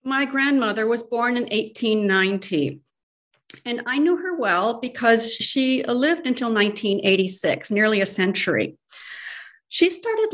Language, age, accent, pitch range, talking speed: English, 50-69, American, 205-270 Hz, 120 wpm